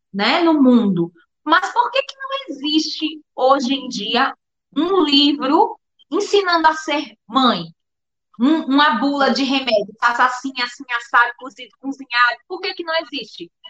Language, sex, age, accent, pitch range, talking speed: Portuguese, female, 20-39, Brazilian, 225-310 Hz, 145 wpm